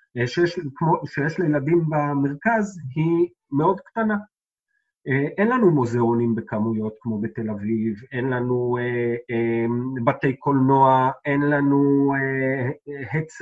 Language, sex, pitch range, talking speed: Hebrew, male, 125-180 Hz, 105 wpm